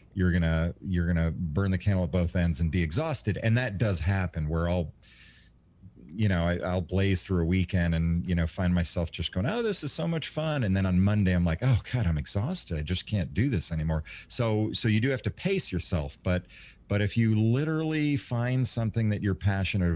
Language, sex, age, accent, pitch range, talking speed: English, male, 40-59, American, 90-115 Hz, 230 wpm